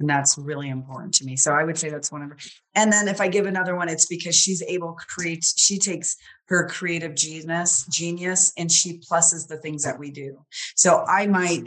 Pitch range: 140-170 Hz